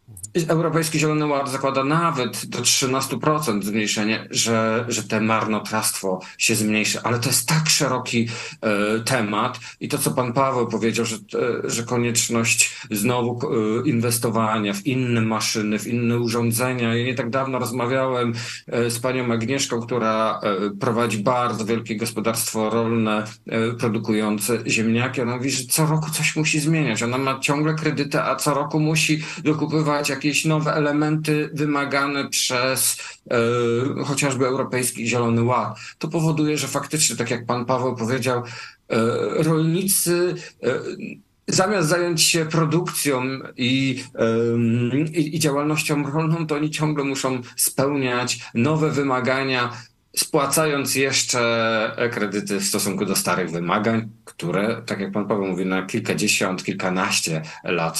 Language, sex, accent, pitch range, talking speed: Polish, male, native, 115-145 Hz, 135 wpm